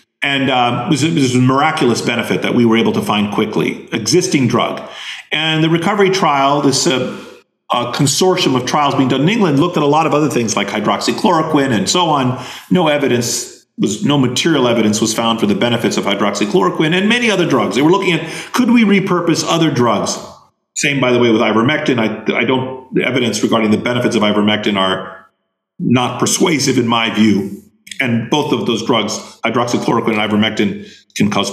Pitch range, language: 120-170 Hz, English